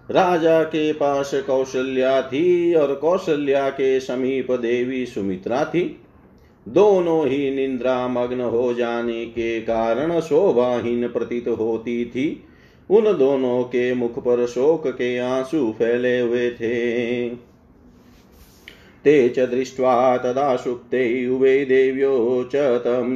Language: Hindi